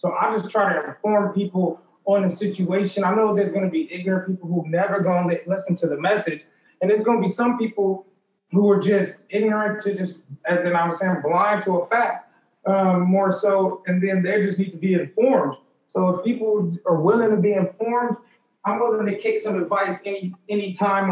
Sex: male